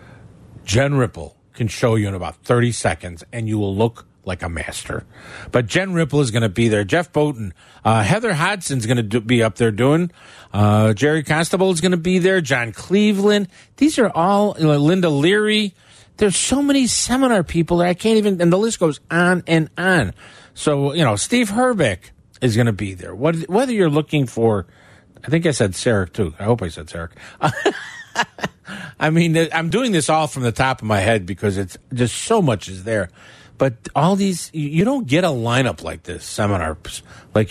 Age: 50-69